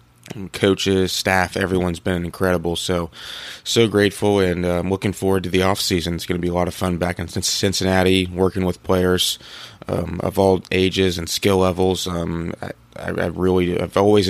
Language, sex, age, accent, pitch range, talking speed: English, male, 20-39, American, 90-100 Hz, 185 wpm